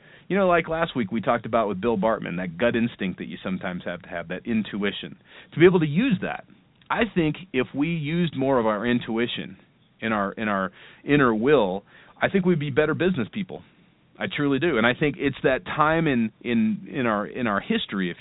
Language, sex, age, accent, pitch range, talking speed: English, male, 40-59, American, 110-150 Hz, 220 wpm